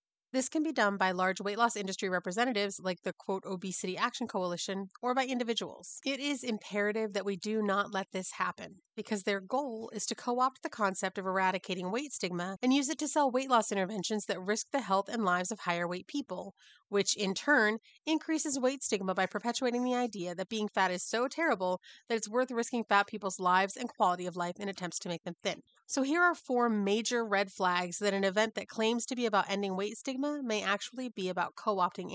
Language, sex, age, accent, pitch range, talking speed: English, female, 30-49, American, 190-250 Hz, 215 wpm